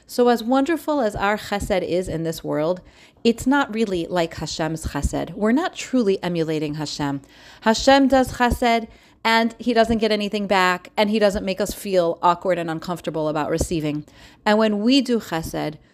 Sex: female